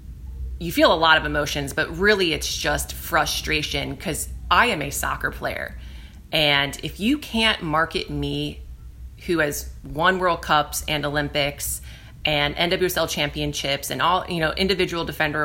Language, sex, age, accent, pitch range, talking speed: English, female, 30-49, American, 145-165 Hz, 150 wpm